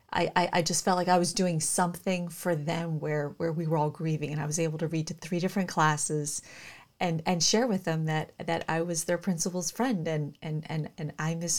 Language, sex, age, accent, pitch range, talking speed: English, female, 30-49, American, 155-180 Hz, 235 wpm